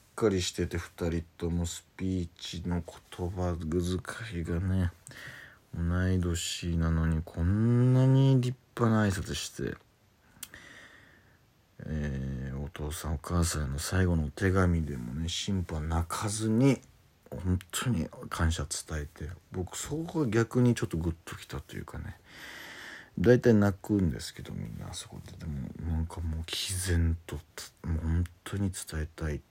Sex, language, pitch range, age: male, Japanese, 80-100 Hz, 40-59